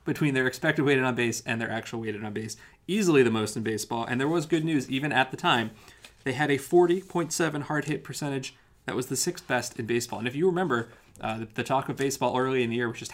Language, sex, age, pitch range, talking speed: English, male, 30-49, 120-150 Hz, 250 wpm